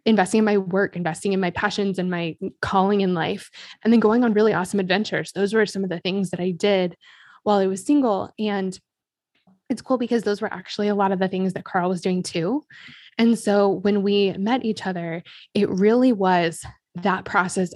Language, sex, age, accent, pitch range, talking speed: English, female, 20-39, American, 185-210 Hz, 210 wpm